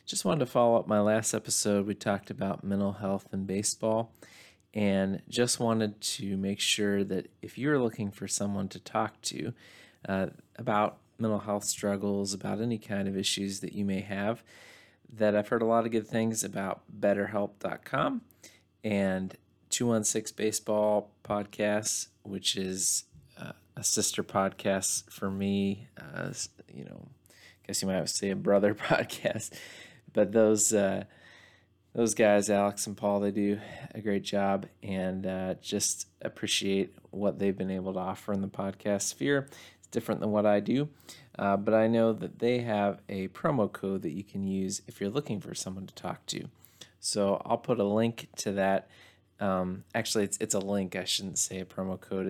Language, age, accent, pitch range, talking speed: English, 30-49, American, 95-110 Hz, 175 wpm